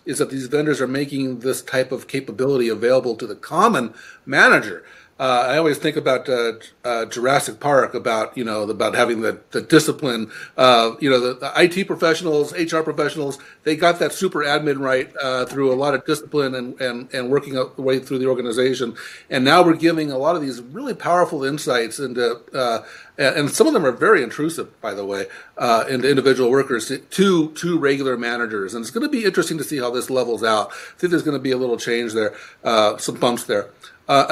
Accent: American